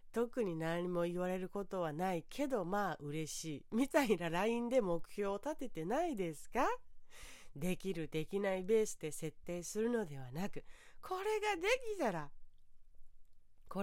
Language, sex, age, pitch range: Japanese, female, 40-59, 170-270 Hz